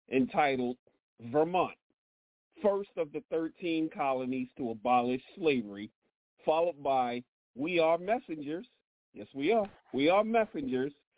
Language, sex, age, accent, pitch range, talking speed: English, male, 40-59, American, 125-160 Hz, 115 wpm